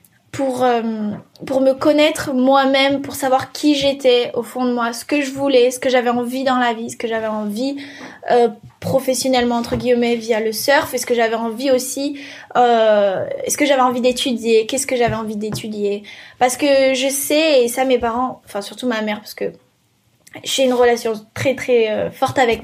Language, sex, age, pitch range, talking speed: French, female, 10-29, 230-270 Hz, 200 wpm